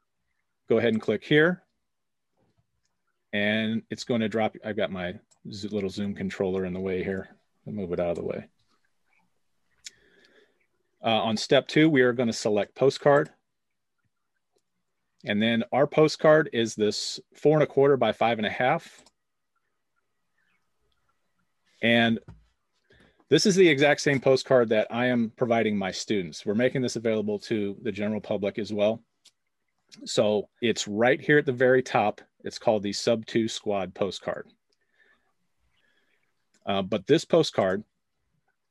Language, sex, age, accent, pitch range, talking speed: English, male, 40-59, American, 105-130 Hz, 145 wpm